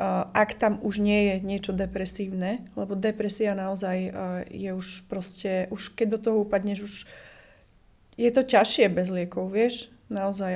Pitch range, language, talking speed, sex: 190-210 Hz, Slovak, 150 wpm, female